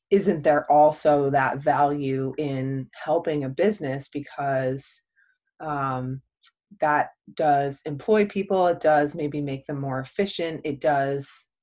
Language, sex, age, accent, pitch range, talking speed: English, female, 20-39, American, 140-155 Hz, 125 wpm